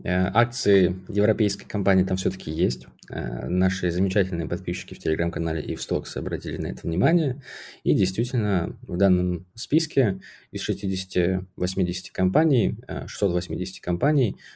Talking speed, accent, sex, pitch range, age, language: 110 wpm, native, male, 90-105 Hz, 20-39, Russian